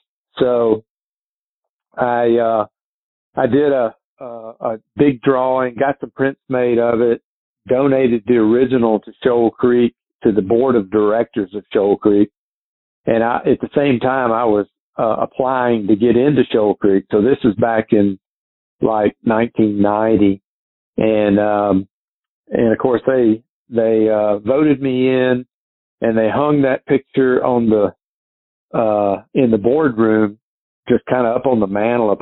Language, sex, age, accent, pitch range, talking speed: English, male, 50-69, American, 110-125 Hz, 155 wpm